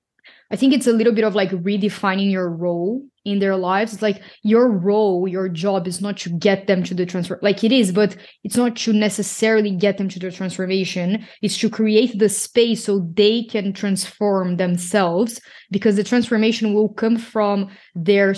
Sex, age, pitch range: female, 20-39, 195-220 Hz